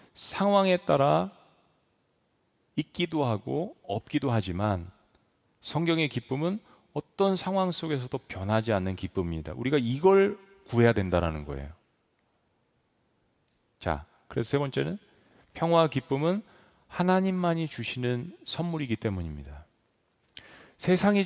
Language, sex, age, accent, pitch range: Korean, male, 40-59, native, 100-155 Hz